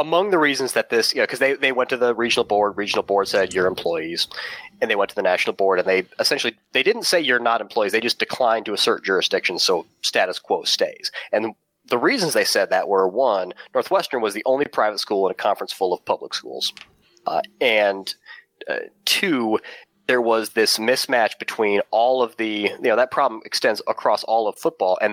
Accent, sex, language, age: American, male, English, 30-49